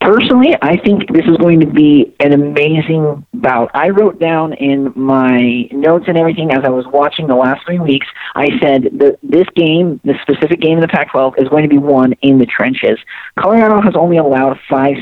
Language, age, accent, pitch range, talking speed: English, 40-59, American, 135-170 Hz, 205 wpm